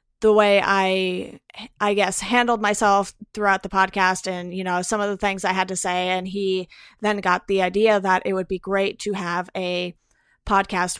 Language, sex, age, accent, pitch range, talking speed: English, female, 30-49, American, 185-205 Hz, 195 wpm